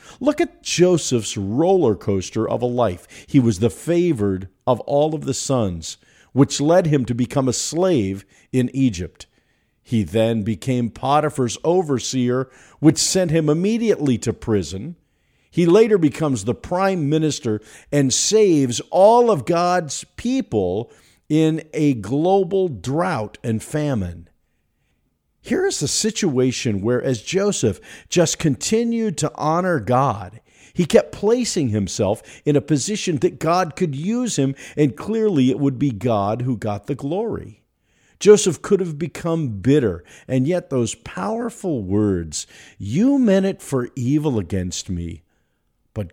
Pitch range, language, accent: 110-175 Hz, English, American